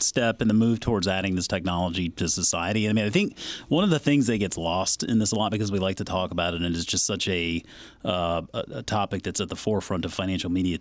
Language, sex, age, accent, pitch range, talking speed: English, male, 30-49, American, 95-125 Hz, 265 wpm